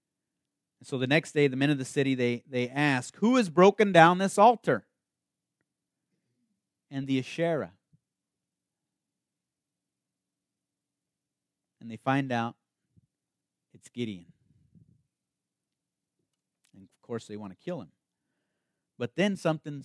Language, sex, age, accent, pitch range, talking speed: English, male, 40-59, American, 115-155 Hz, 115 wpm